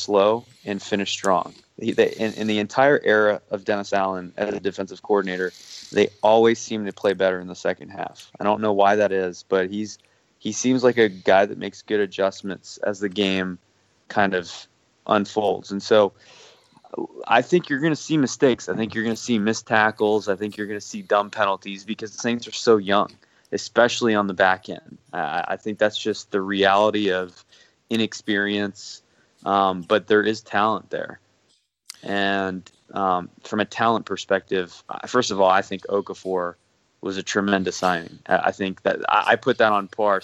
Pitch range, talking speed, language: 95-105 Hz, 190 wpm, English